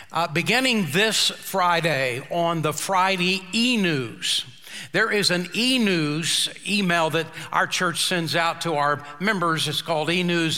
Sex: male